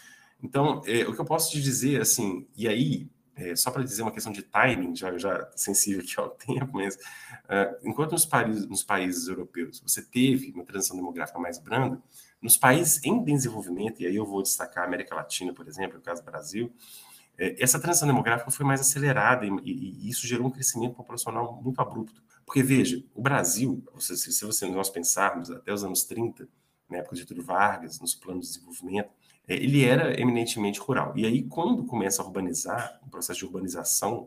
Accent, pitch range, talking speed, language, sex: Brazilian, 100-135 Hz, 190 wpm, Portuguese, male